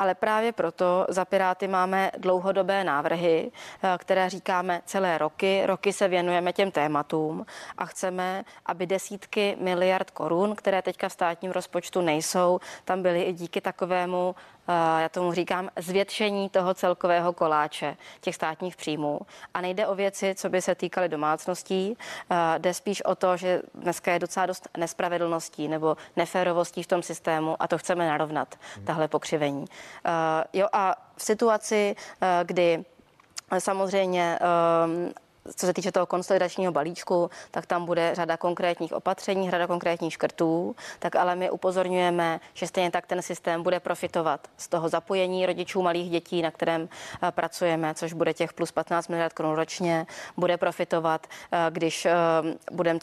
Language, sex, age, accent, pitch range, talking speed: Czech, female, 20-39, native, 165-185 Hz, 145 wpm